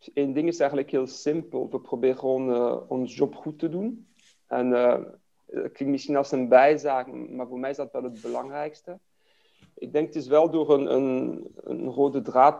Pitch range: 130-160 Hz